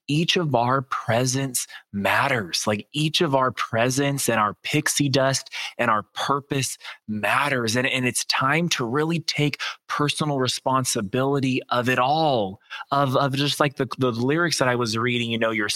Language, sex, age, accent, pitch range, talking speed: English, male, 20-39, American, 110-140 Hz, 170 wpm